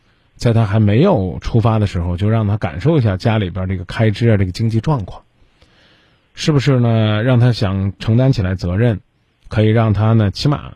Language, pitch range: Chinese, 105-135 Hz